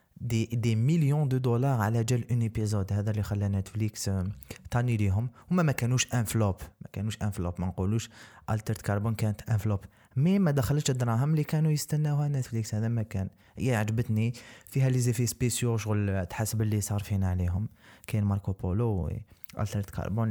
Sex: male